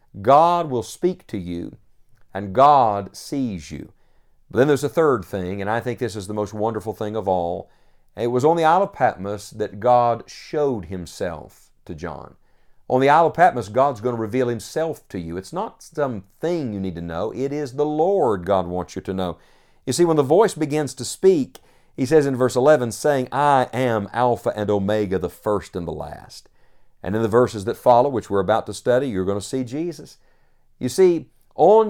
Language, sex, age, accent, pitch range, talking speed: English, male, 50-69, American, 105-145 Hz, 210 wpm